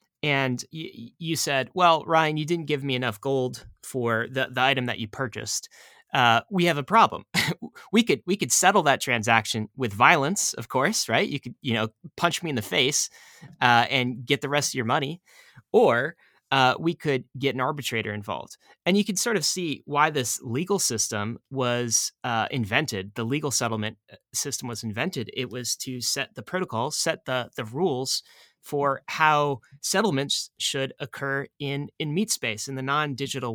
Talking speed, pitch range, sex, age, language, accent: 180 wpm, 120-145 Hz, male, 30-49, English, American